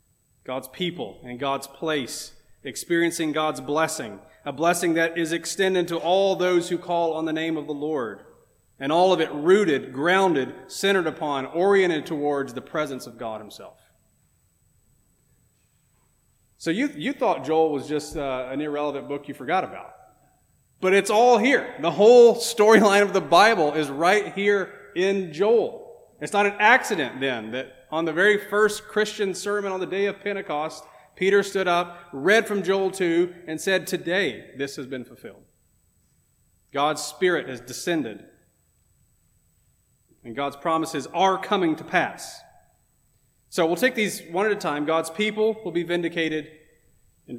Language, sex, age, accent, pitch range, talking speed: English, male, 30-49, American, 135-190 Hz, 155 wpm